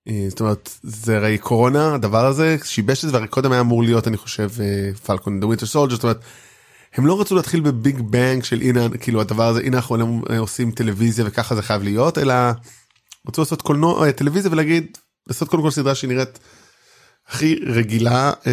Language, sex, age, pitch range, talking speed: Hebrew, male, 20-39, 115-155 Hz, 170 wpm